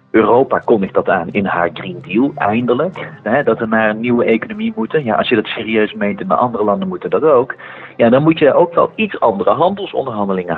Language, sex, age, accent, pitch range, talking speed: Dutch, male, 40-59, Dutch, 100-140 Hz, 220 wpm